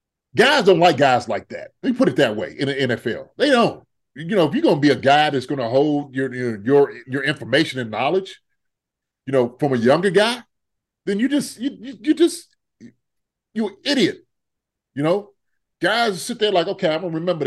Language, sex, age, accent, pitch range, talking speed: English, male, 30-49, American, 125-180 Hz, 220 wpm